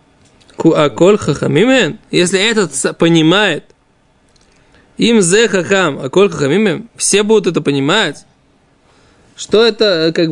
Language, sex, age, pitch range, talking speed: Russian, male, 20-39, 165-220 Hz, 65 wpm